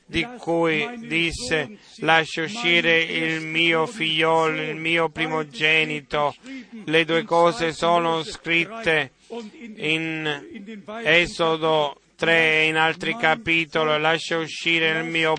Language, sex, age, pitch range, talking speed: Italian, male, 30-49, 160-175 Hz, 105 wpm